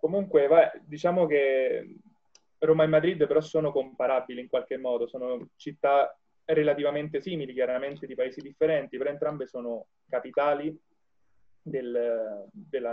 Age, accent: 20-39, native